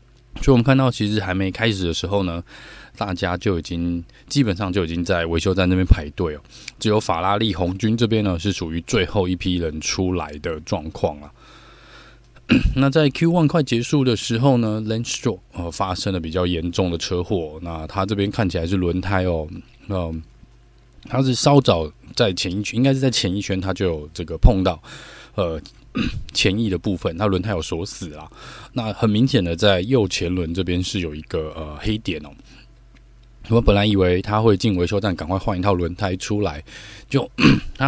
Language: Chinese